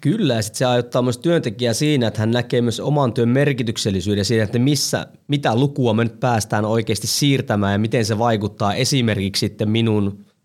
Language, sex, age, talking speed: Finnish, male, 20-39, 185 wpm